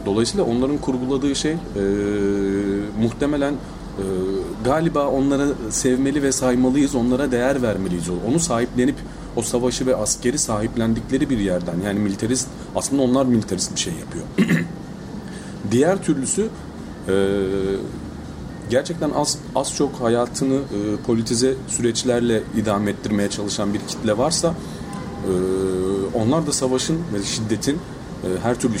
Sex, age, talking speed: male, 40-59, 115 wpm